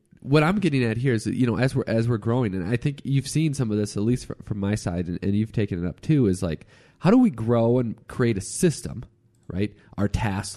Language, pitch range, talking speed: English, 95-130 Hz, 265 wpm